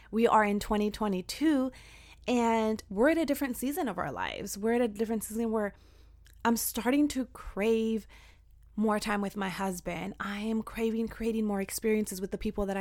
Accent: American